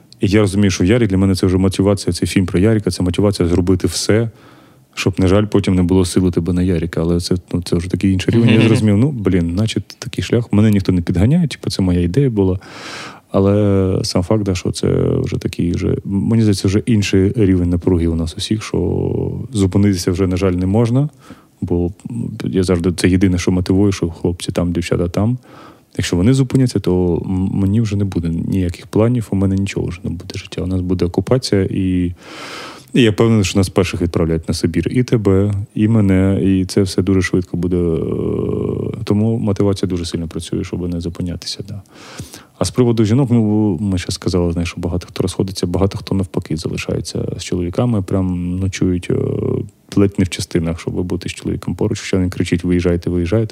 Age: 30-49